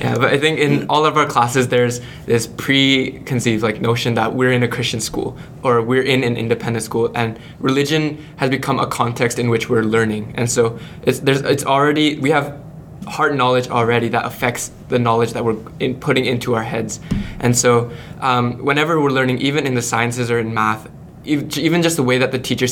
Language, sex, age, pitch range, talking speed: English, male, 20-39, 120-140 Hz, 205 wpm